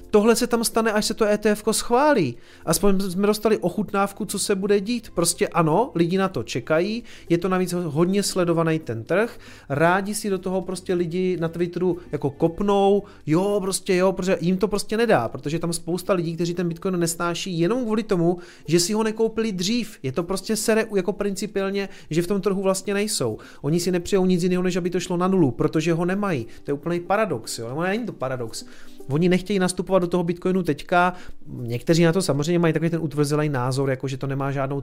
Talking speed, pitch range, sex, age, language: 205 wpm, 160-200 Hz, male, 30-49, Czech